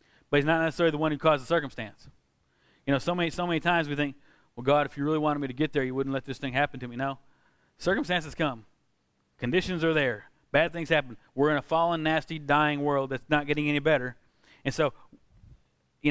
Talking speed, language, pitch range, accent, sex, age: 225 wpm, English, 135-160 Hz, American, male, 30-49